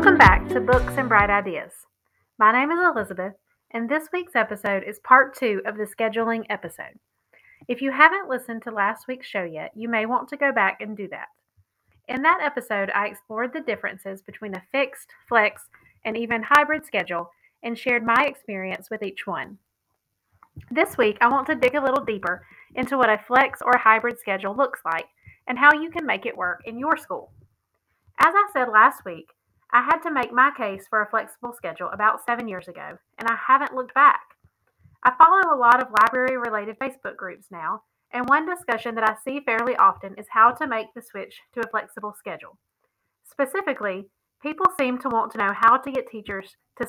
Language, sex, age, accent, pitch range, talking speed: English, female, 30-49, American, 210-270 Hz, 195 wpm